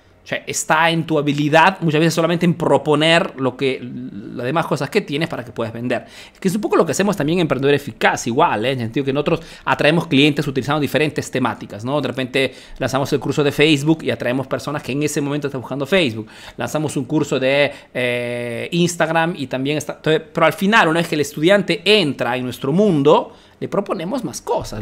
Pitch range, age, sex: 140-185 Hz, 30-49, male